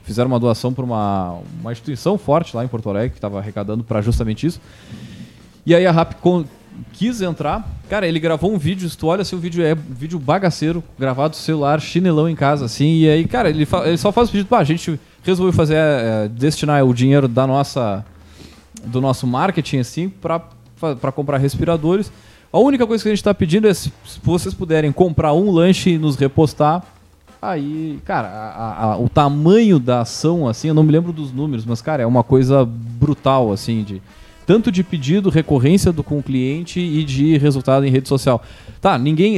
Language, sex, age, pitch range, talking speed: Portuguese, male, 20-39, 125-170 Hz, 200 wpm